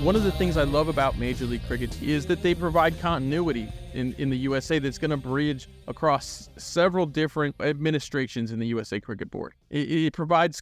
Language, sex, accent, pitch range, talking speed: English, male, American, 125-170 Hz, 200 wpm